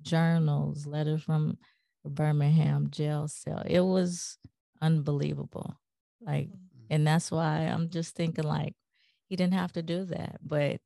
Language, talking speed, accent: English, 135 wpm, American